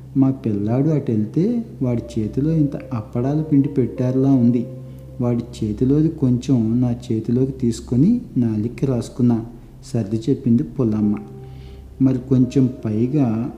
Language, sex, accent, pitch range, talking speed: Telugu, male, native, 110-135 Hz, 115 wpm